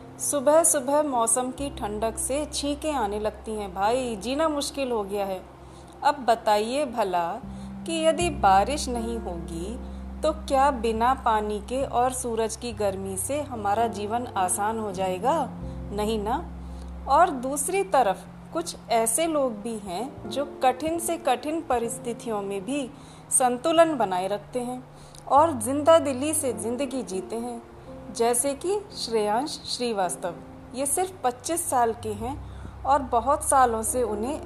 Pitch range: 210-295 Hz